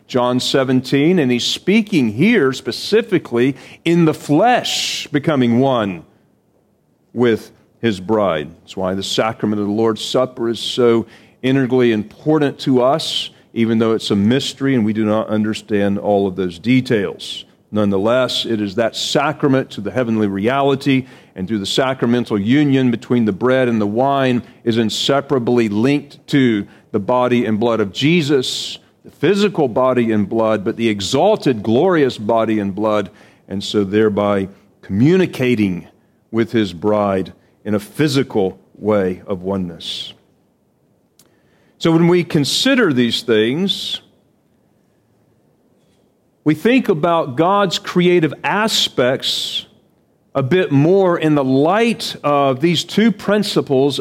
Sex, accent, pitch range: male, American, 110-145 Hz